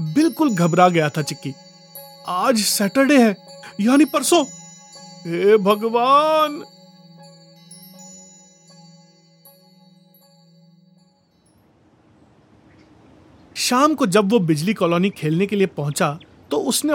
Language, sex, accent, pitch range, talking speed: Hindi, male, native, 175-260 Hz, 80 wpm